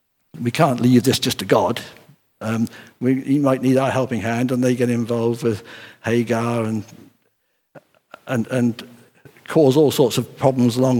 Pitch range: 120-155 Hz